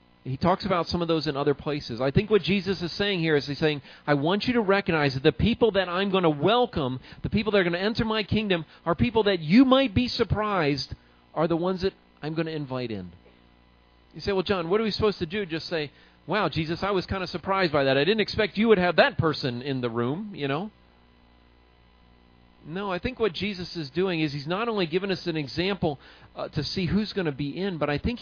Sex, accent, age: male, American, 40-59